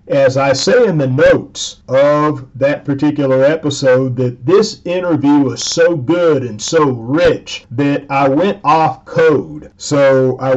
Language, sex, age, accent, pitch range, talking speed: English, male, 40-59, American, 130-155 Hz, 150 wpm